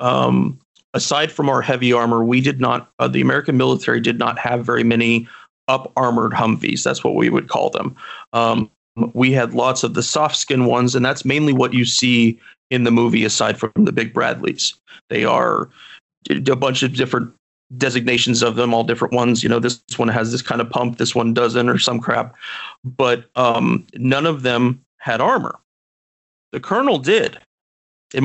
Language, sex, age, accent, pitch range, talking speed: English, male, 40-59, American, 115-135 Hz, 190 wpm